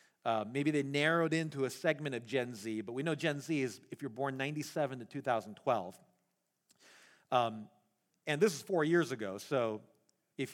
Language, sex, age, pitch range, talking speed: English, male, 40-59, 165-275 Hz, 205 wpm